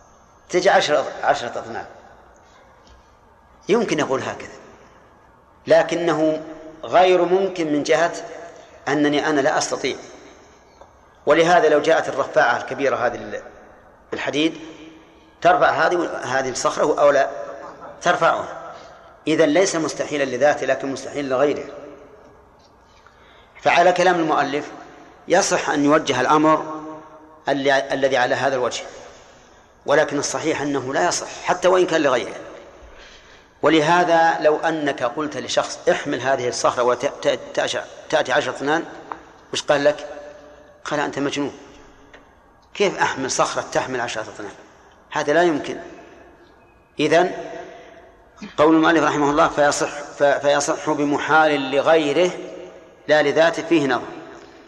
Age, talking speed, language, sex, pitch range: 40-59, 105 wpm, Arabic, male, 145-165 Hz